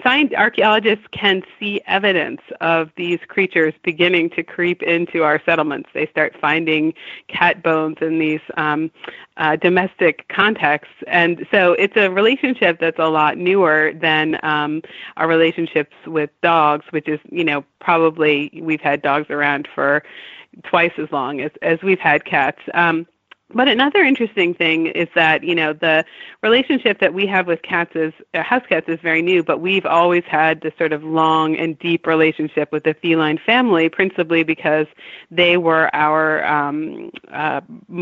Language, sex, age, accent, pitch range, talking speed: English, female, 30-49, American, 160-195 Hz, 160 wpm